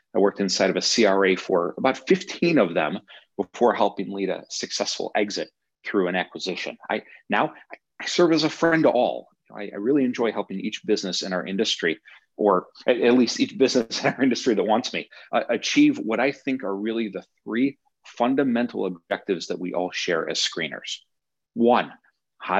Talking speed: 185 wpm